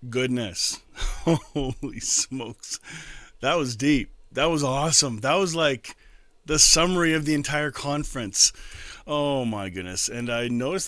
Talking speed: 125 wpm